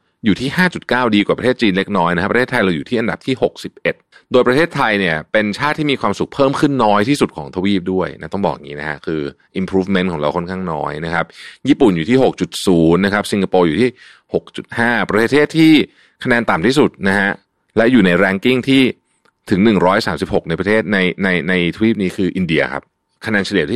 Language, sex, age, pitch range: Thai, male, 30-49, 85-115 Hz